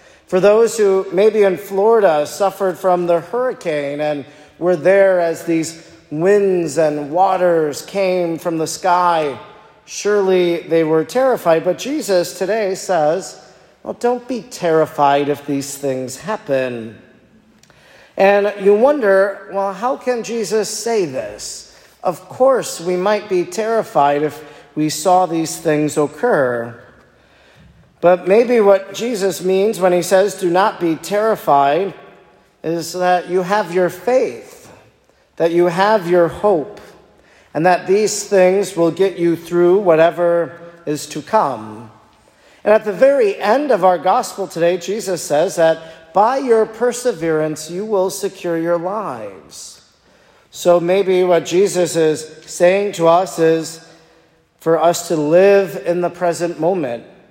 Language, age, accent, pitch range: English, 40-59, American, 165-200 Hz